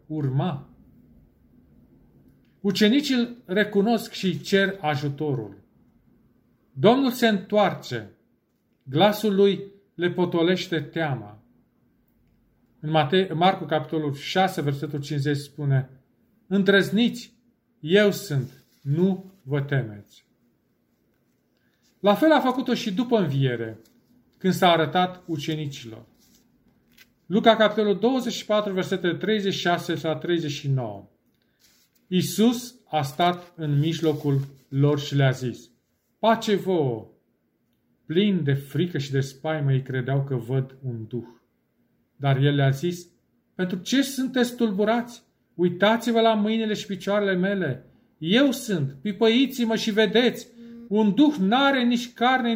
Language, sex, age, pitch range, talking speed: Romanian, male, 40-59, 145-220 Hz, 105 wpm